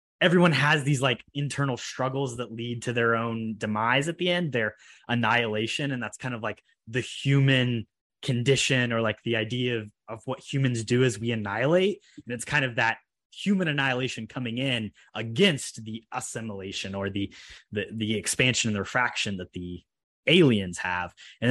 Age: 20-39